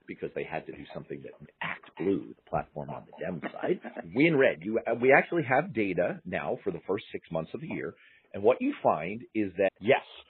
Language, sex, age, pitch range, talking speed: English, male, 40-59, 100-150 Hz, 220 wpm